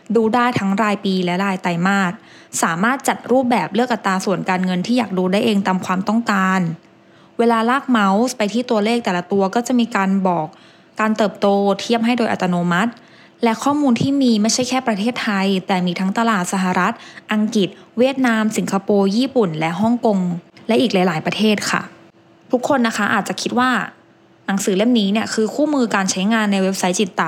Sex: female